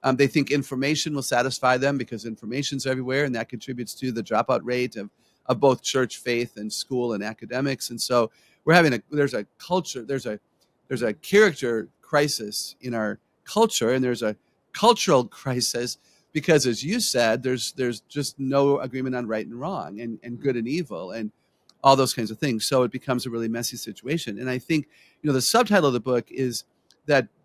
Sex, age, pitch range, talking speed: male, 50-69, 120-145 Hz, 200 wpm